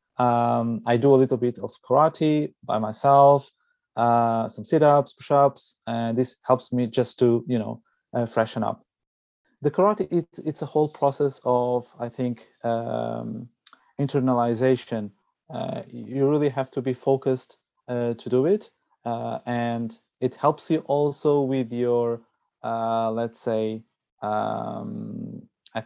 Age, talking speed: 30-49, 140 wpm